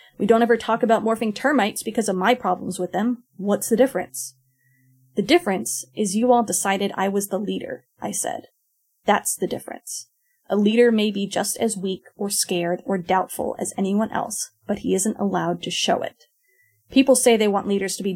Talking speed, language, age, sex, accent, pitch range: 195 wpm, English, 20-39, female, American, 185-235 Hz